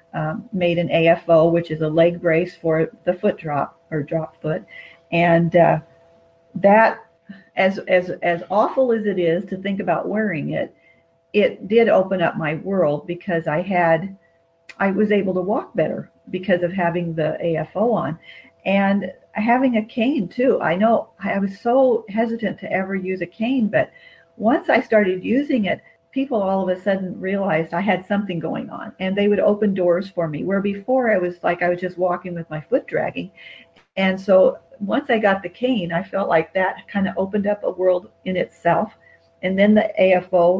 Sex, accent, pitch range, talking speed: female, American, 170-210 Hz, 190 wpm